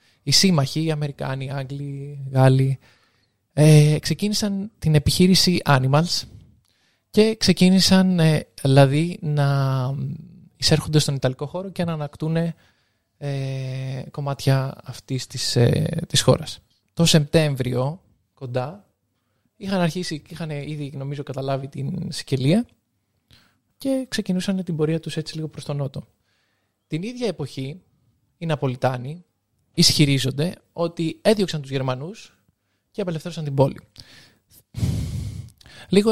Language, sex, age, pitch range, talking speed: Greek, male, 20-39, 130-165 Hz, 110 wpm